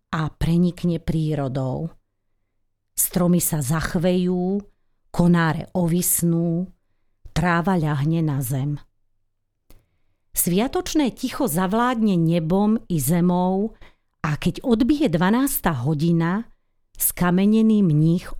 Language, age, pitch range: Slovak, 40-59, 140-190 Hz